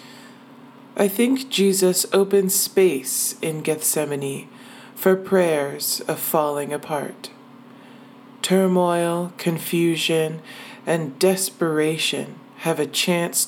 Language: English